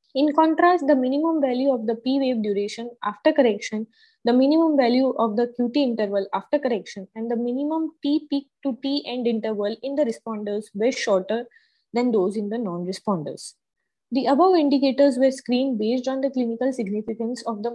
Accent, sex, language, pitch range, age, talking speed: Indian, female, English, 225-280 Hz, 20-39, 175 wpm